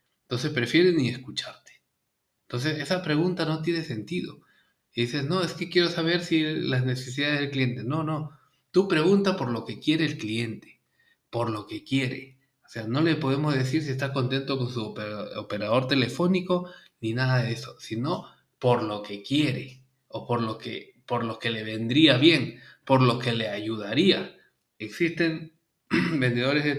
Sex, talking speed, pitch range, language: male, 170 wpm, 120-150 Hz, Spanish